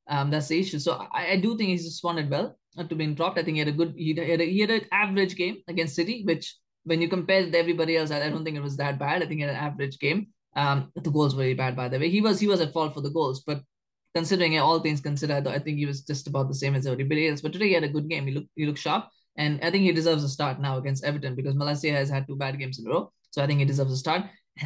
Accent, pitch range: Indian, 145-180 Hz